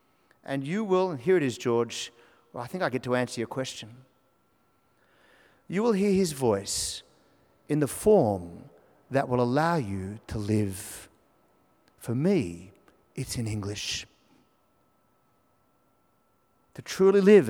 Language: English